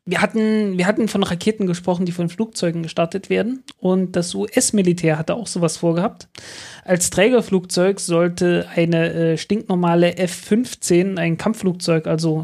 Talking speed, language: 140 wpm, German